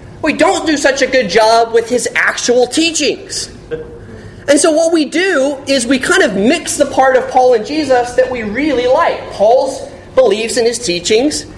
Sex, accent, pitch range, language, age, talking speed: male, American, 165-250 Hz, English, 30-49, 185 wpm